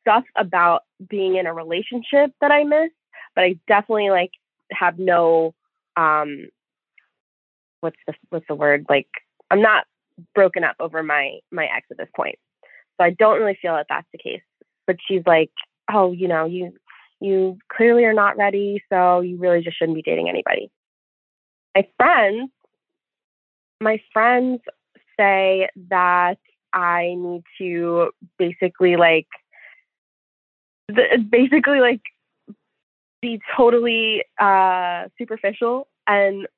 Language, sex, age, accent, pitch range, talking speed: English, female, 20-39, American, 175-220 Hz, 130 wpm